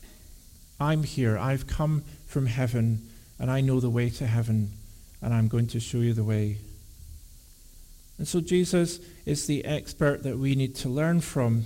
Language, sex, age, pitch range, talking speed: English, male, 50-69, 115-150 Hz, 170 wpm